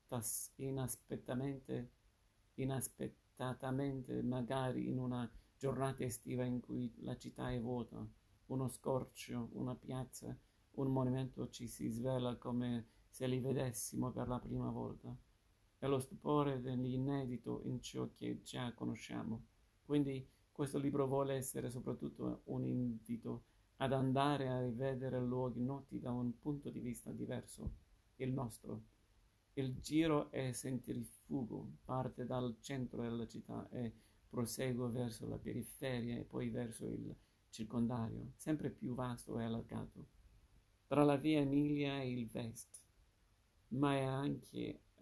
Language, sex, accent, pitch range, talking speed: Italian, male, native, 110-130 Hz, 125 wpm